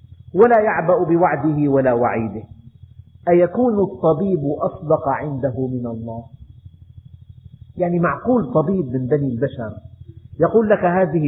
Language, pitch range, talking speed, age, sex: Arabic, 125-190 Hz, 105 wpm, 50-69, male